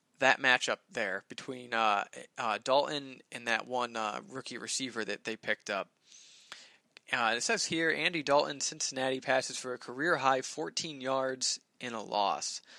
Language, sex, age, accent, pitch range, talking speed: English, male, 20-39, American, 115-145 Hz, 160 wpm